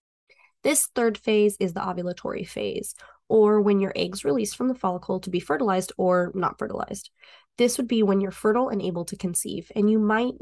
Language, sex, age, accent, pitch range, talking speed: English, female, 20-39, American, 185-225 Hz, 195 wpm